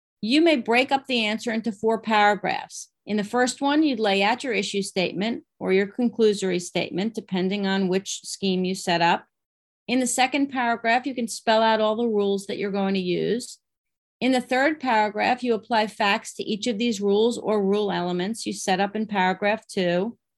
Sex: female